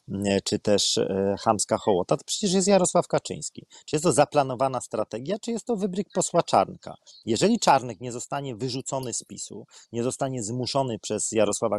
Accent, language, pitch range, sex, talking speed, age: native, Polish, 125-185 Hz, male, 165 wpm, 40-59